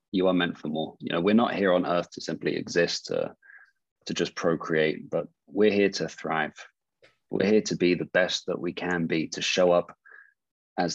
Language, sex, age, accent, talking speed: English, male, 20-39, British, 210 wpm